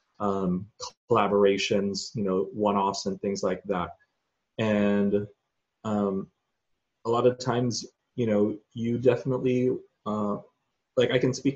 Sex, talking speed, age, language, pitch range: male, 125 wpm, 30-49, English, 100-125 Hz